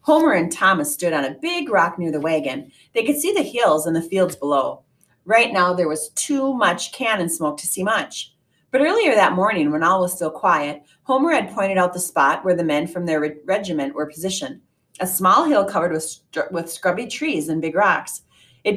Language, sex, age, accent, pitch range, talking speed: English, female, 30-49, American, 155-230 Hz, 210 wpm